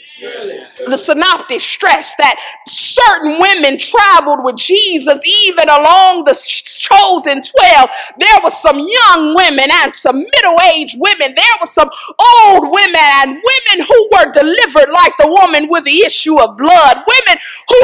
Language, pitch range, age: English, 305-420 Hz, 40-59